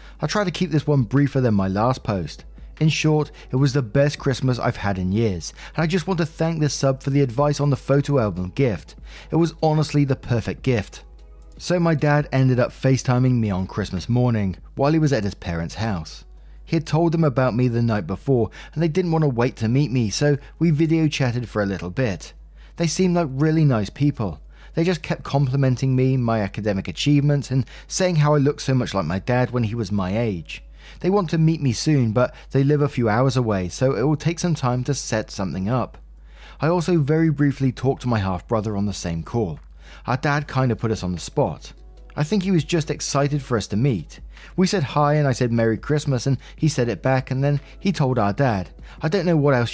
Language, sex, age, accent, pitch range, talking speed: English, male, 20-39, British, 105-150 Hz, 235 wpm